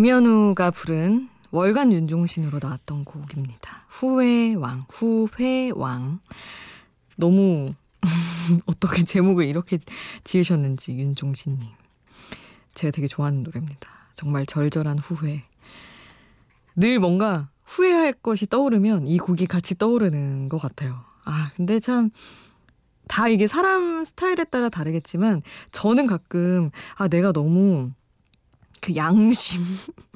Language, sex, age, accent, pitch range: Korean, female, 20-39, native, 160-235 Hz